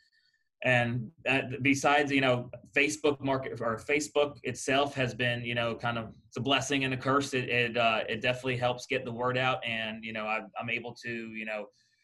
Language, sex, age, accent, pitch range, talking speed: English, male, 30-49, American, 110-130 Hz, 205 wpm